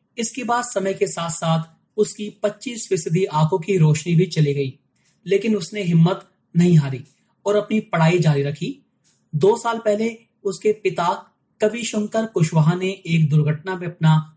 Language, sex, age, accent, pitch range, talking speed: Hindi, male, 30-49, native, 155-200 Hz, 155 wpm